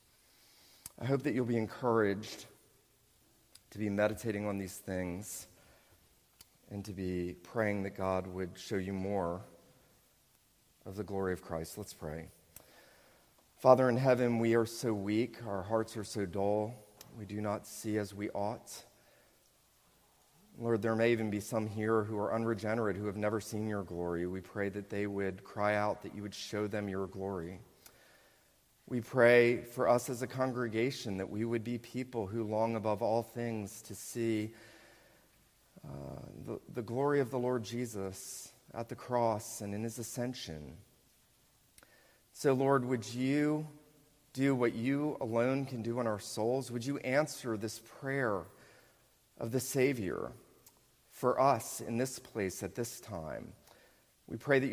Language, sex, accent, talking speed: English, male, American, 160 wpm